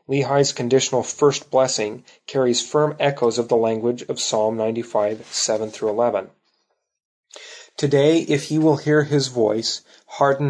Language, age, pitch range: English, 30-49, 115-135 Hz